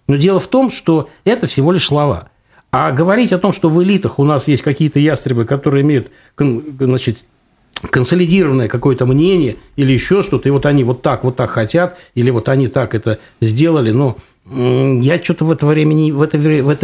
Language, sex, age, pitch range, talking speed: Russian, male, 60-79, 125-180 Hz, 180 wpm